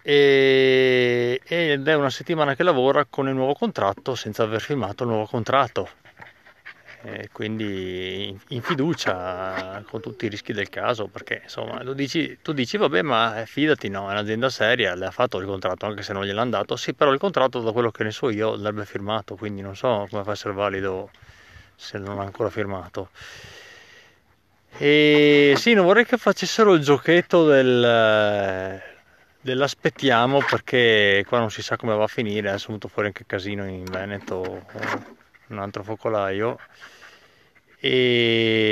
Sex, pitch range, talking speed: male, 100-135 Hz, 165 wpm